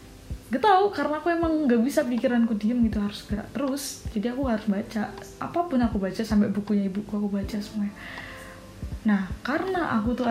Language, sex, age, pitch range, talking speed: Indonesian, female, 10-29, 200-240 Hz, 175 wpm